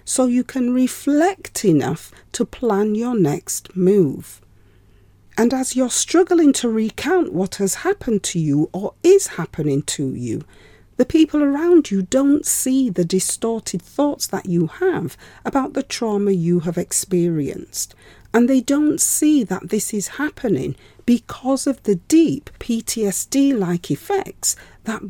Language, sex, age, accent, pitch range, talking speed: English, female, 40-59, British, 185-270 Hz, 140 wpm